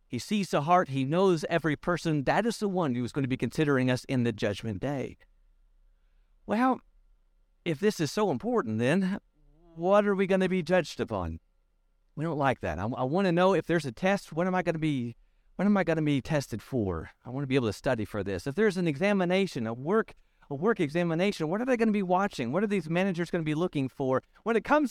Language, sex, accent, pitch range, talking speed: English, male, American, 130-200 Hz, 245 wpm